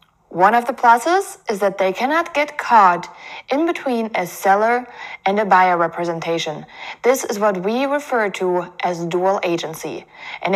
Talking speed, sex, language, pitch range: 160 wpm, female, English, 185-245 Hz